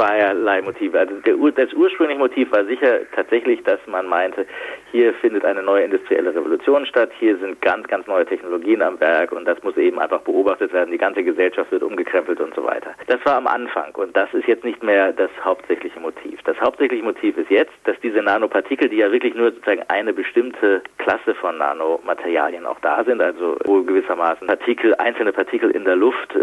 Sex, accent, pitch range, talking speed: male, German, 360-470 Hz, 195 wpm